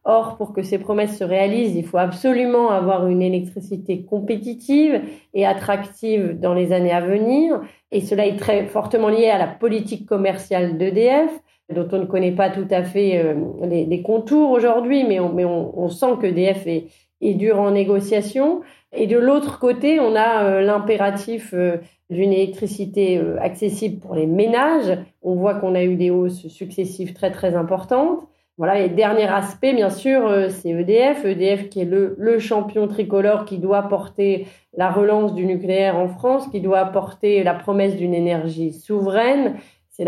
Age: 30-49